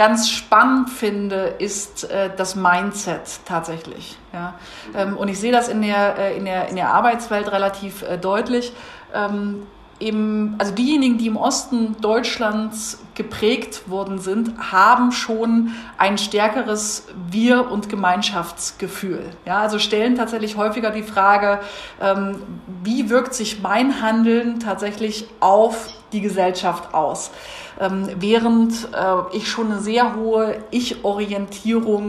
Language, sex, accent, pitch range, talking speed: German, female, German, 195-230 Hz, 110 wpm